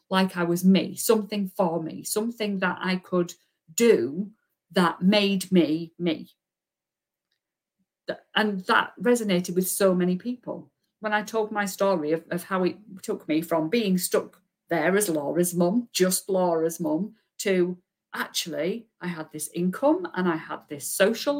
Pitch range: 165-210 Hz